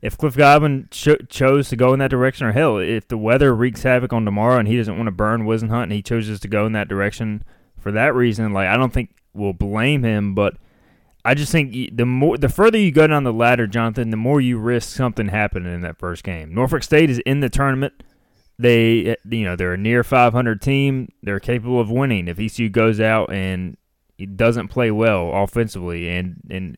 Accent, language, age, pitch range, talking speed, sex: American, English, 20-39, 105-130 Hz, 220 wpm, male